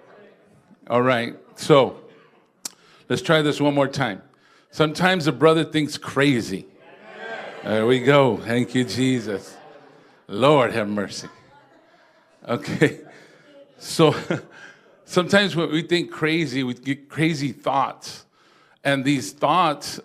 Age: 50-69